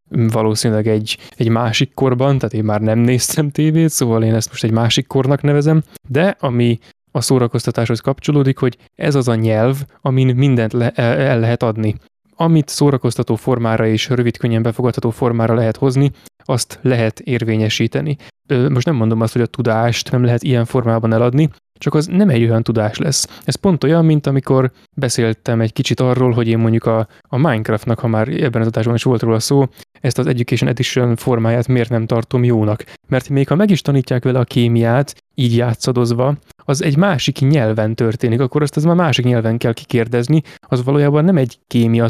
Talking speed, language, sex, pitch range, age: 185 wpm, Hungarian, male, 115-140 Hz, 20-39